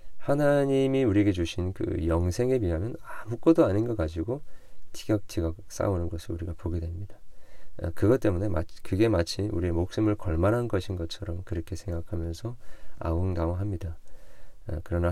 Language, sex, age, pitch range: Korean, male, 40-59, 85-110 Hz